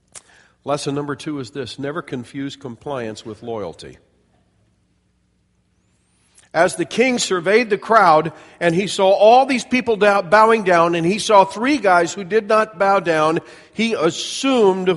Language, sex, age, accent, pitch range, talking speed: English, male, 50-69, American, 120-170 Hz, 145 wpm